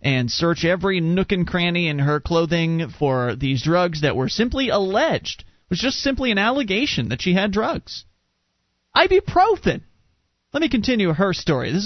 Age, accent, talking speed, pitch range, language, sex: 30-49, American, 165 wpm, 135-175 Hz, English, male